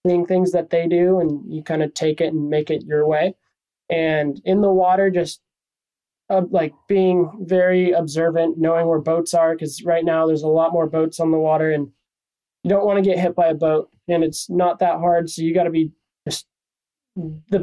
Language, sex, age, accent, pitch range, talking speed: English, male, 20-39, American, 160-190 Hz, 210 wpm